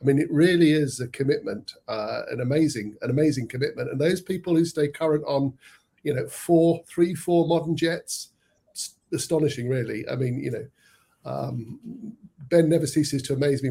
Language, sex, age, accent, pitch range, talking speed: English, male, 50-69, British, 130-155 Hz, 180 wpm